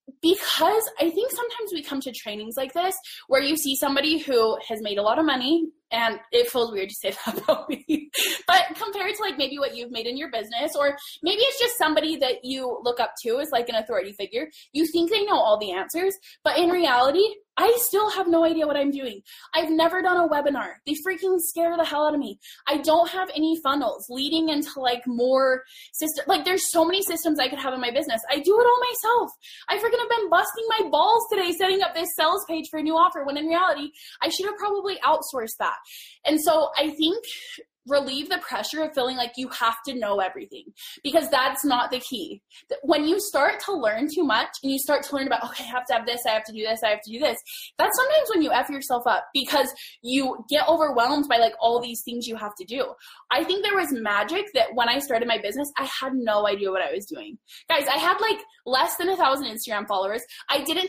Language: English